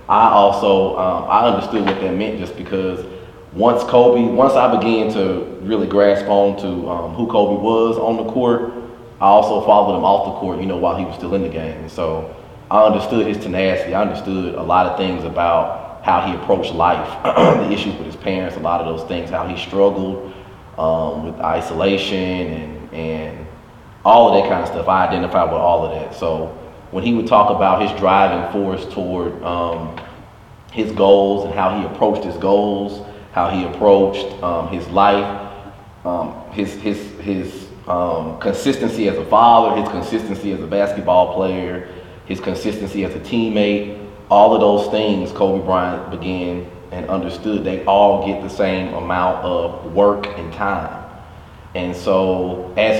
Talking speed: 180 wpm